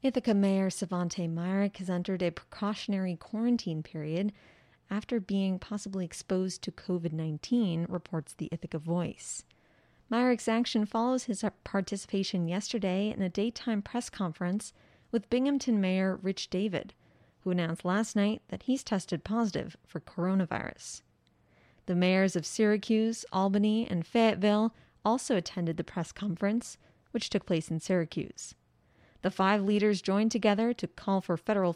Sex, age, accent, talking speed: female, 30-49, American, 135 wpm